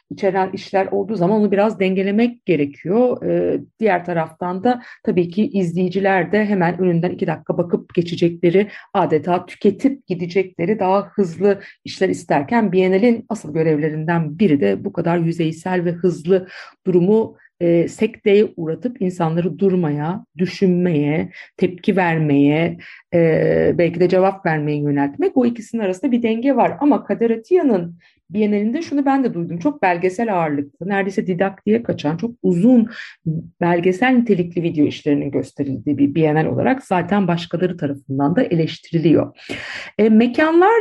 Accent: native